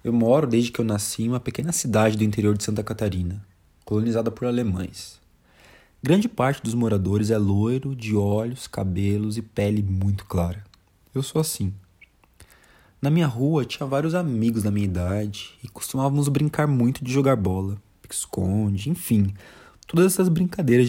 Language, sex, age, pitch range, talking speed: Portuguese, male, 20-39, 95-145 Hz, 160 wpm